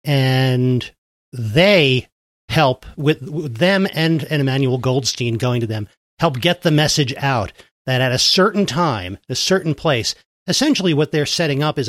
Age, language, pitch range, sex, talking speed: 40-59, English, 130-160 Hz, male, 160 wpm